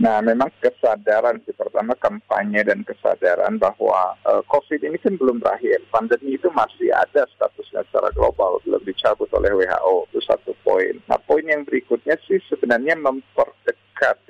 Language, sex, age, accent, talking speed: Indonesian, male, 50-69, native, 150 wpm